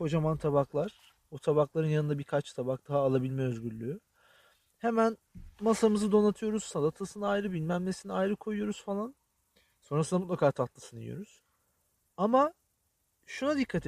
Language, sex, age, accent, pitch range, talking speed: Turkish, male, 40-59, native, 140-215 Hz, 110 wpm